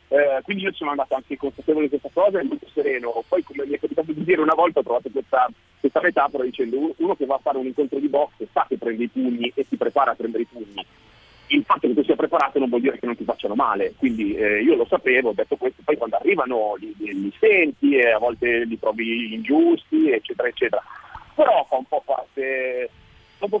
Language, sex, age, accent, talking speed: Italian, male, 40-59, native, 235 wpm